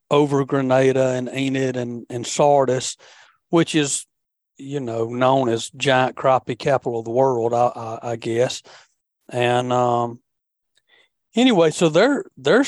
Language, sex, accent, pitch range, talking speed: English, male, American, 130-170 Hz, 135 wpm